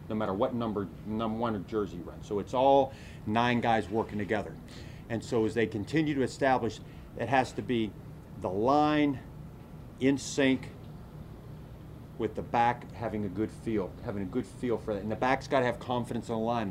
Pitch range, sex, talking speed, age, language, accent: 110-135 Hz, male, 195 wpm, 40-59, English, American